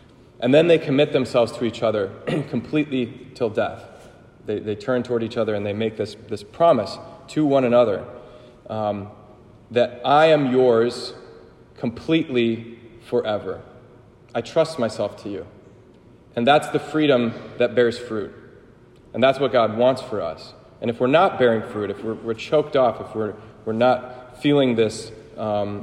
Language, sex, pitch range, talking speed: English, male, 115-135 Hz, 165 wpm